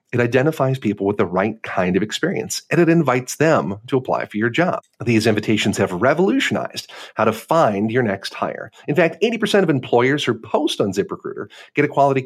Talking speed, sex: 195 wpm, male